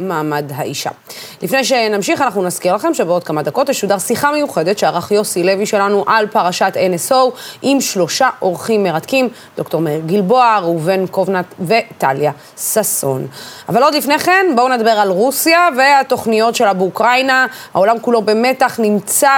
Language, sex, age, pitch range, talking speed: Hebrew, female, 30-49, 195-260 Hz, 140 wpm